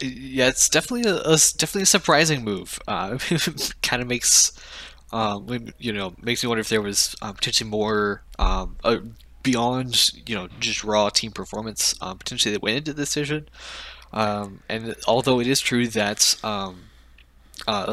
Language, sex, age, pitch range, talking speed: English, male, 10-29, 95-125 Hz, 155 wpm